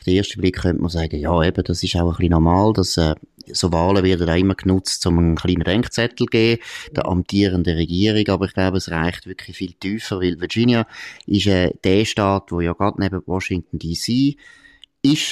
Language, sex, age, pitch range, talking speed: German, male, 30-49, 85-105 Hz, 205 wpm